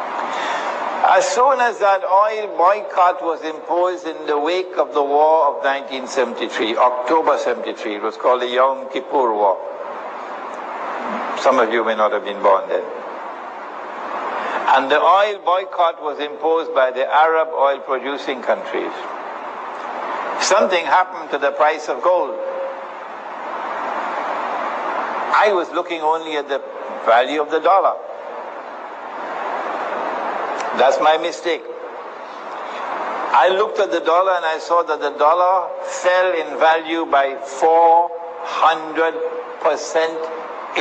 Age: 60-79